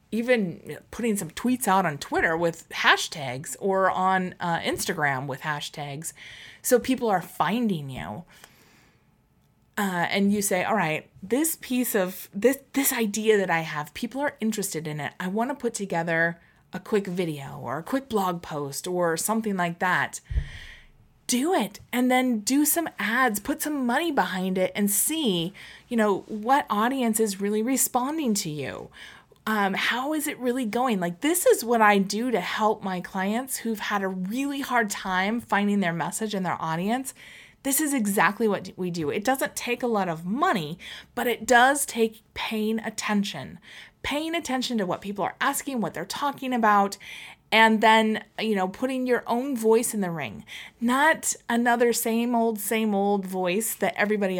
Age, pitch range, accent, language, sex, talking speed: 20-39, 185-245 Hz, American, English, female, 175 wpm